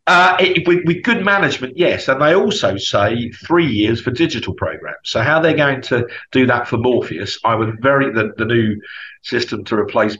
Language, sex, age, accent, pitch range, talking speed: English, male, 50-69, British, 115-165 Hz, 200 wpm